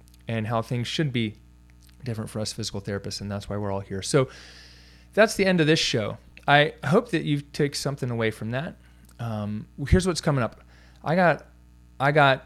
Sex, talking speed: male, 195 wpm